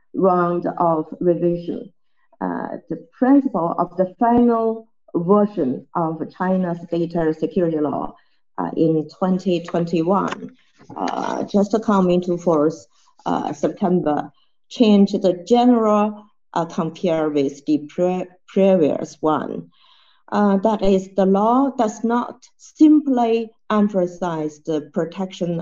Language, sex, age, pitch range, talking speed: Danish, female, 50-69, 170-225 Hz, 110 wpm